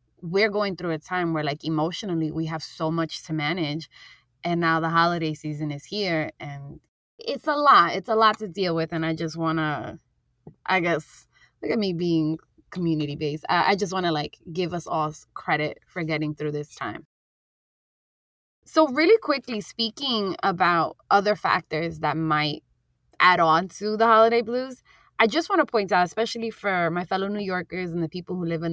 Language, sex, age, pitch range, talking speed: English, female, 20-39, 155-195 Hz, 190 wpm